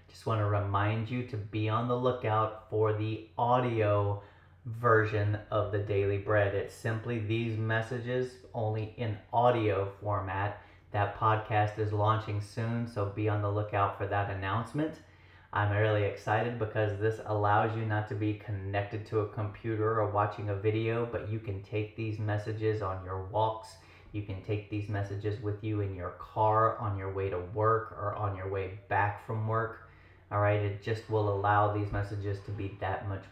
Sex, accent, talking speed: male, American, 180 wpm